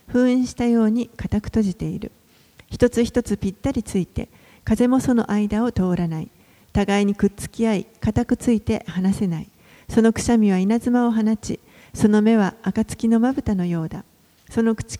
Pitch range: 195-235 Hz